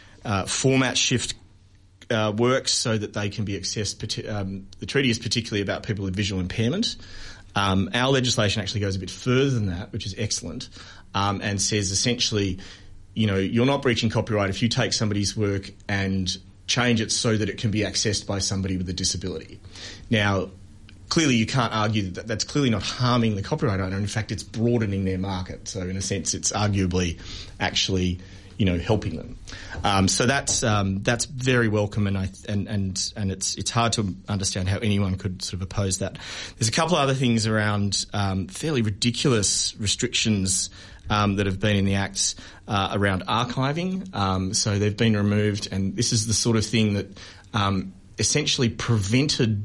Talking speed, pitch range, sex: 185 wpm, 95-115 Hz, male